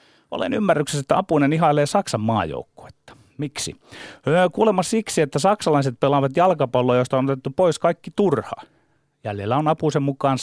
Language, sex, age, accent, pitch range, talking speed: Finnish, male, 30-49, native, 120-175 Hz, 140 wpm